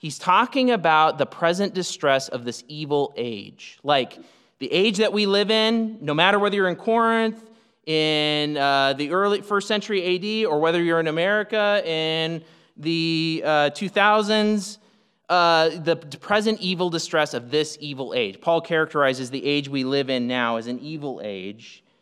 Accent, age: American, 30-49